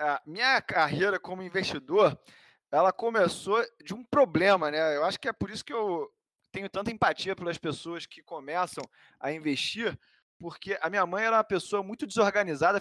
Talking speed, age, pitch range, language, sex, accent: 175 wpm, 20-39, 150-205 Hz, Portuguese, male, Brazilian